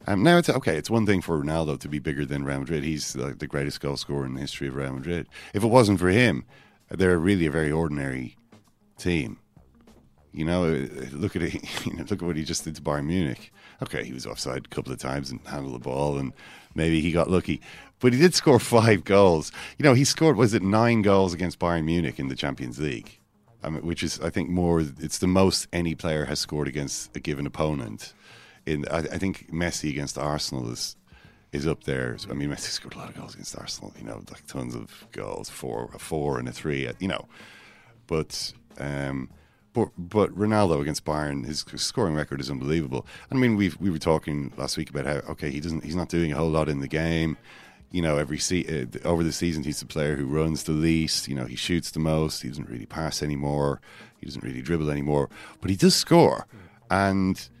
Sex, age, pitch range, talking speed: male, 40-59, 70-90 Hz, 225 wpm